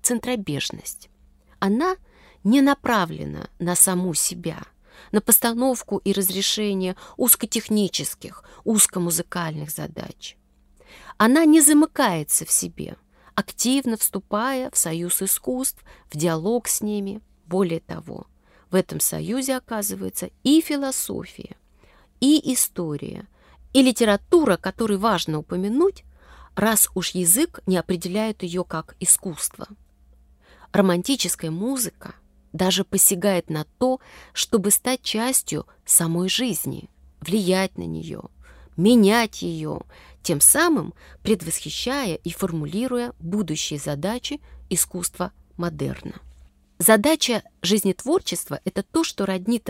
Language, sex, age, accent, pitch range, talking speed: Russian, female, 30-49, native, 170-235 Hz, 100 wpm